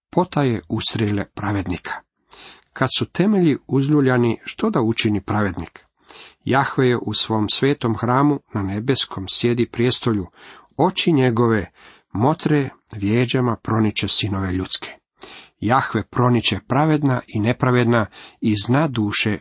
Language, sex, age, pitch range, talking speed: Croatian, male, 40-59, 105-135 Hz, 110 wpm